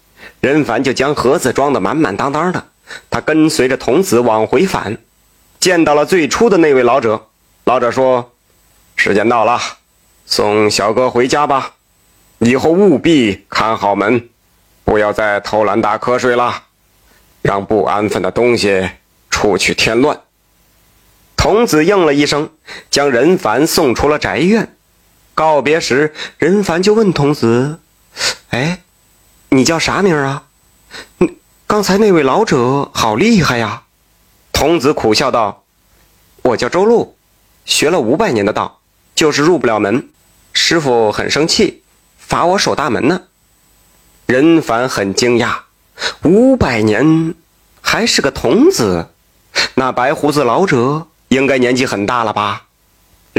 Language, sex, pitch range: Chinese, male, 105-155 Hz